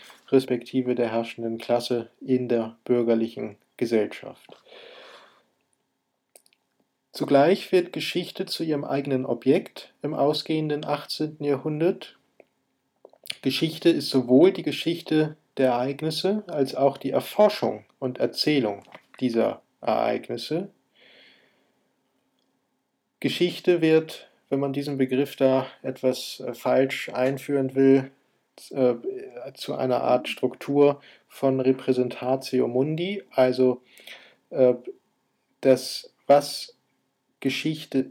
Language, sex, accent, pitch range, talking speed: German, male, German, 125-150 Hz, 90 wpm